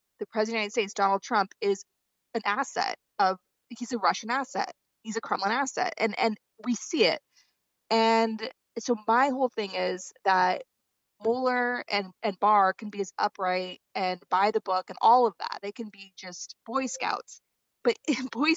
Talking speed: 185 wpm